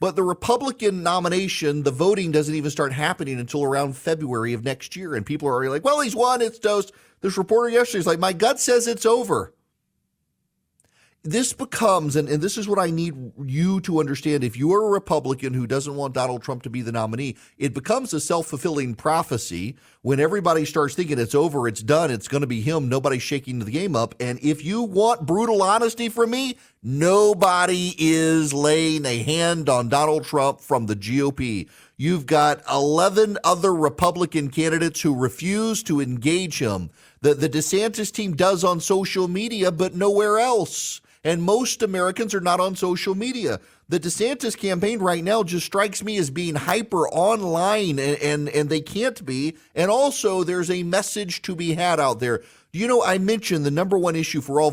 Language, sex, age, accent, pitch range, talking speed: English, male, 40-59, American, 145-190 Hz, 185 wpm